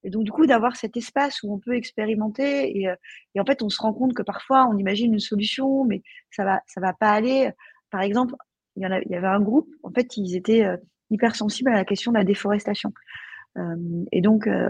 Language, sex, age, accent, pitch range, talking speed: French, female, 30-49, French, 200-255 Hz, 235 wpm